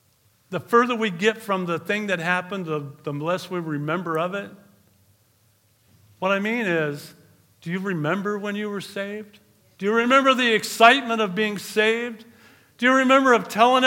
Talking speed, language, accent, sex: 175 wpm, English, American, male